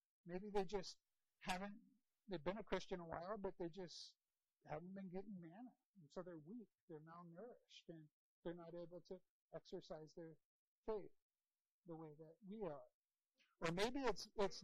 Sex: male